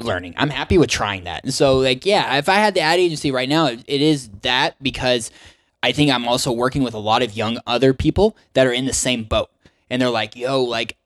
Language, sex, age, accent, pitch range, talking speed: English, male, 20-39, American, 120-145 Hz, 250 wpm